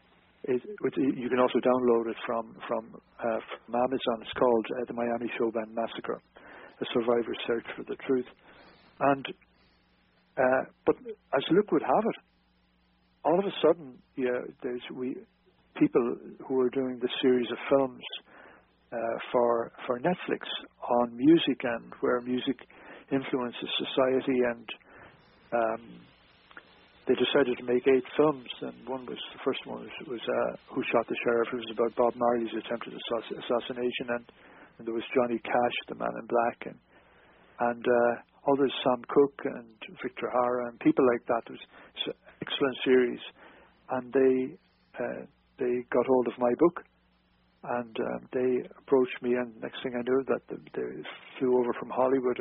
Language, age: English, 60-79